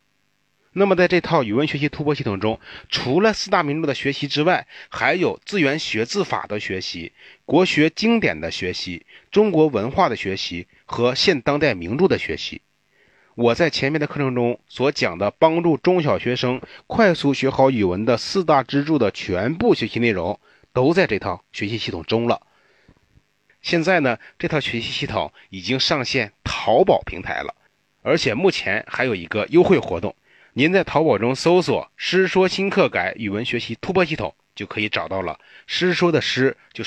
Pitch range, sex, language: 110-160 Hz, male, Chinese